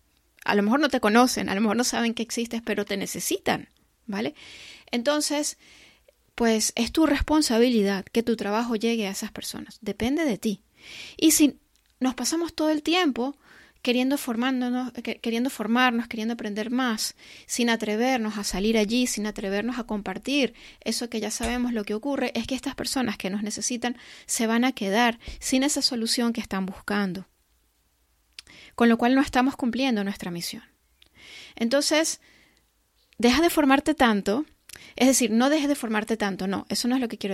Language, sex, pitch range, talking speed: Spanish, female, 210-260 Hz, 170 wpm